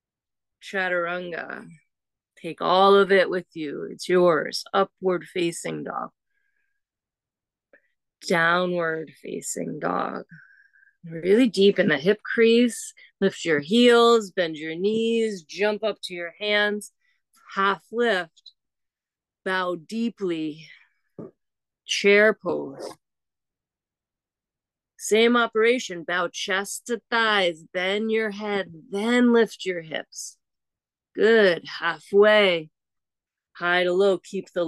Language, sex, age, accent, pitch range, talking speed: English, female, 30-49, American, 175-210 Hz, 100 wpm